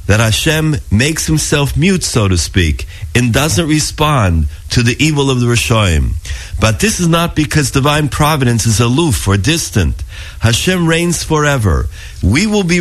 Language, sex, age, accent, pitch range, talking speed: English, male, 50-69, American, 90-150 Hz, 160 wpm